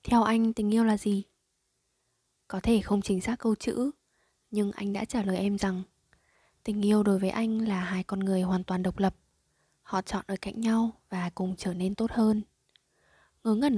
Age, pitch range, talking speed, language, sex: 20-39, 190-225 Hz, 200 wpm, Vietnamese, female